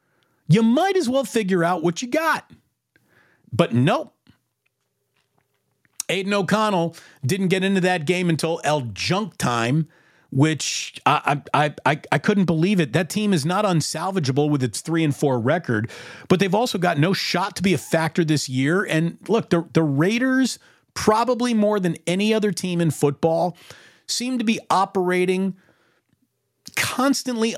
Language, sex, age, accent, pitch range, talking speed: English, male, 40-59, American, 135-205 Hz, 155 wpm